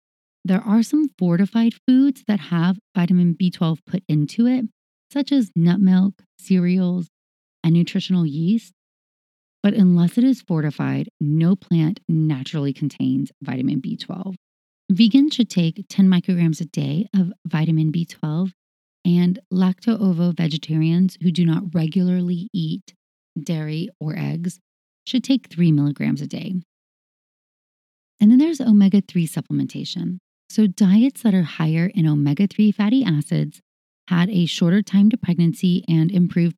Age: 30-49